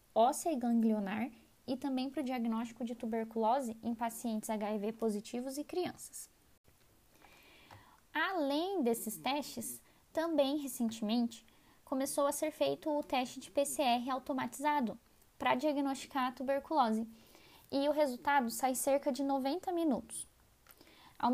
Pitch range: 230-280 Hz